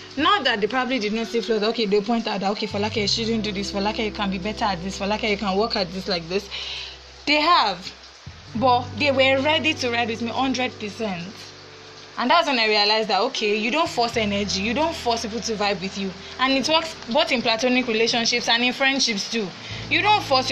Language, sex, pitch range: English, female, 210-275 Hz